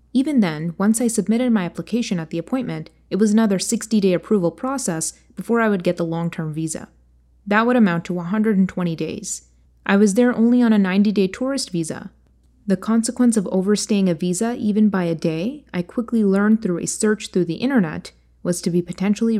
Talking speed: 190 wpm